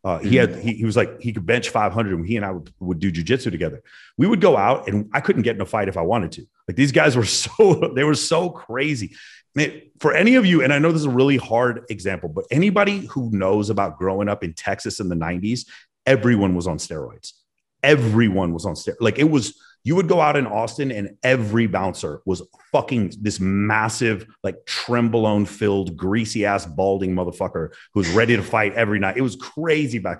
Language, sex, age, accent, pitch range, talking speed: English, male, 30-49, American, 95-120 Hz, 215 wpm